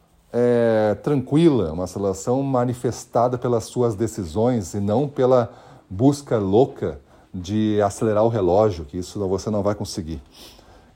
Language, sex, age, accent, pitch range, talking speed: Portuguese, male, 40-59, Brazilian, 105-135 Hz, 120 wpm